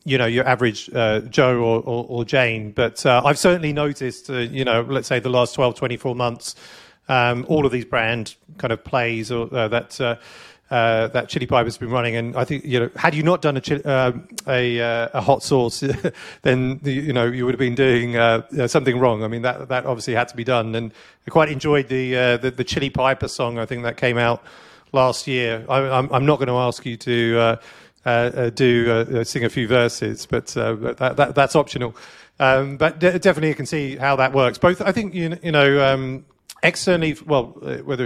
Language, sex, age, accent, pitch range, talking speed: English, male, 40-59, British, 120-140 Hz, 225 wpm